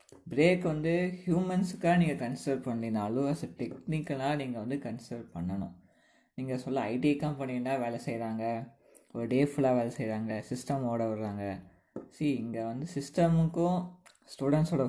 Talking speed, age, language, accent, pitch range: 120 wpm, 20-39, Tamil, native, 115-145 Hz